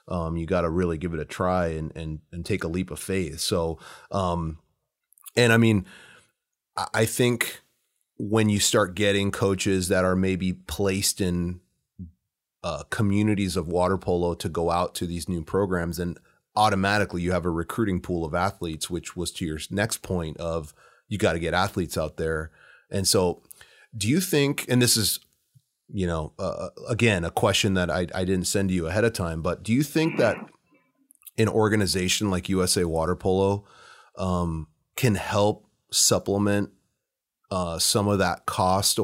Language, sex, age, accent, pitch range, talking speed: English, male, 30-49, American, 85-100 Hz, 170 wpm